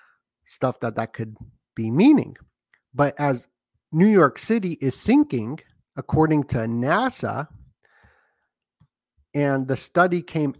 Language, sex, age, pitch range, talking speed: English, male, 40-59, 125-155 Hz, 115 wpm